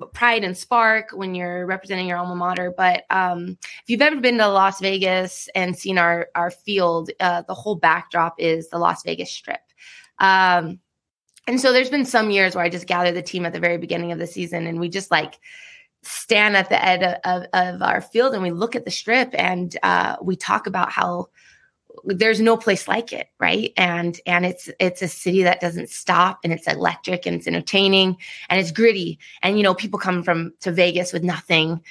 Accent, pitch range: American, 170-190 Hz